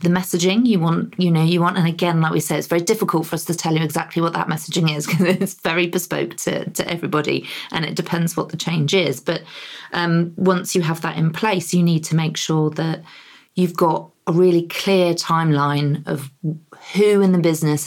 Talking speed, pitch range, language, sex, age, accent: 220 wpm, 155-180 Hz, English, female, 40-59, British